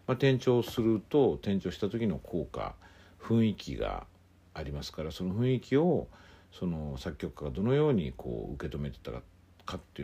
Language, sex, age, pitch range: Japanese, male, 60-79, 80-100 Hz